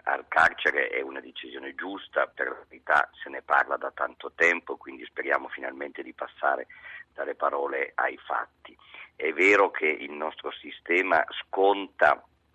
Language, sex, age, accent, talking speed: Italian, male, 40-59, native, 150 wpm